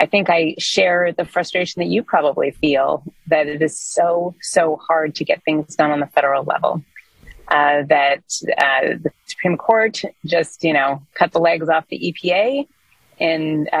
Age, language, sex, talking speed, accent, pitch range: 30-49, English, female, 175 wpm, American, 155-200 Hz